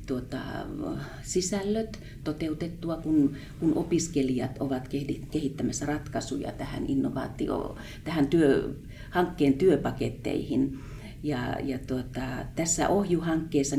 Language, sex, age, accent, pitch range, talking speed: Finnish, female, 40-59, native, 130-155 Hz, 85 wpm